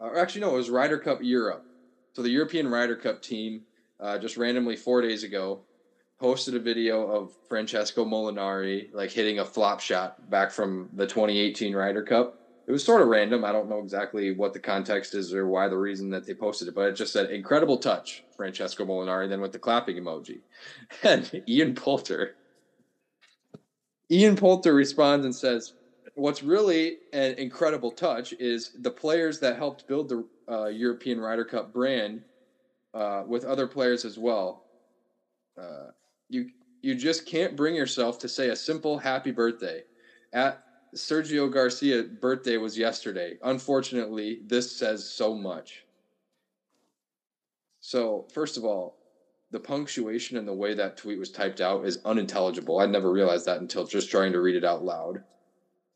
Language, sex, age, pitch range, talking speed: English, male, 20-39, 105-135 Hz, 165 wpm